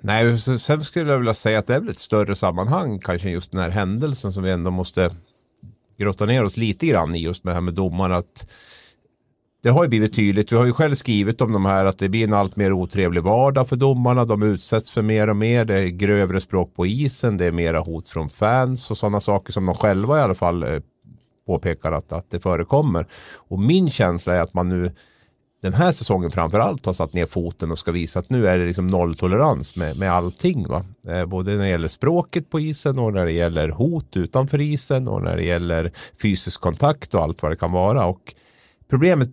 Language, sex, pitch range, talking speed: Swedish, male, 90-120 Hz, 220 wpm